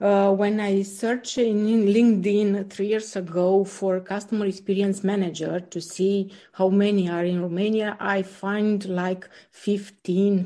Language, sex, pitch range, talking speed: English, female, 195-225 Hz, 140 wpm